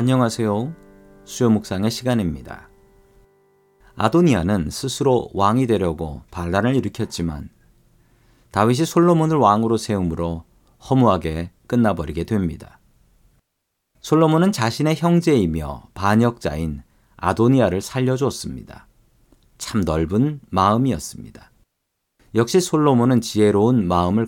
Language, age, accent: Korean, 40-59, native